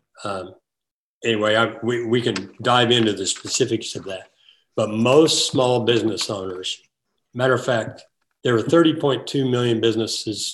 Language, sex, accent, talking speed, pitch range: English, male, American, 140 wpm, 105-125 Hz